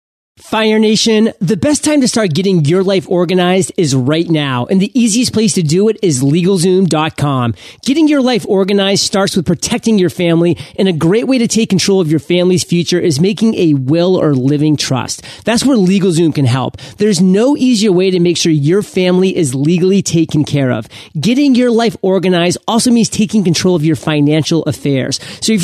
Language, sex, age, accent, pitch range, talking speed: English, male, 30-49, American, 160-215 Hz, 195 wpm